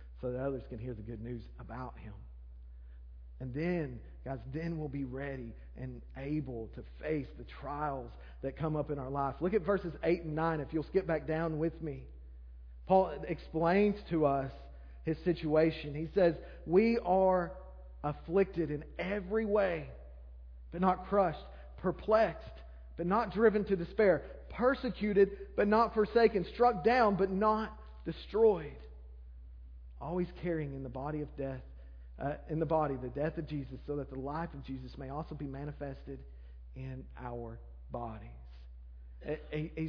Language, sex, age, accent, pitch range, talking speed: English, male, 40-59, American, 125-175 Hz, 155 wpm